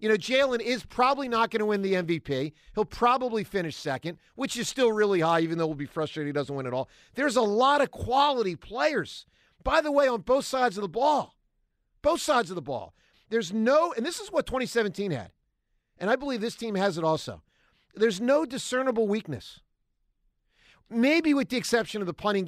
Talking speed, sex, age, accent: 205 wpm, male, 50-69, American